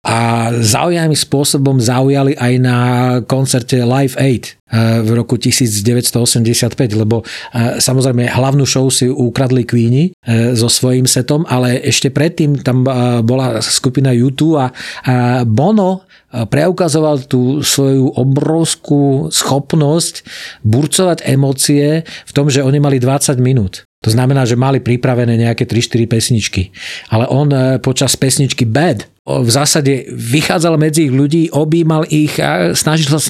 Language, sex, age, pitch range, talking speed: Slovak, male, 40-59, 120-150 Hz, 125 wpm